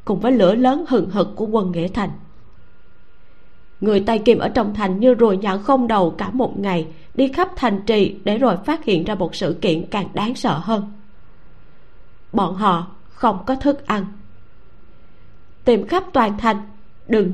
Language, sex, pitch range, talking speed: Vietnamese, female, 190-255 Hz, 175 wpm